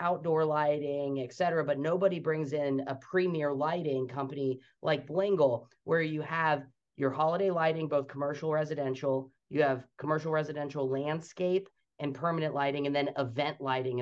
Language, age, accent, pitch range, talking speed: English, 30-49, American, 135-160 Hz, 150 wpm